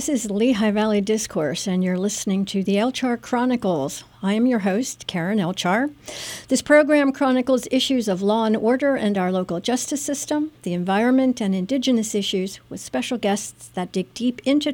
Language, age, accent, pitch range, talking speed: English, 60-79, American, 200-260 Hz, 175 wpm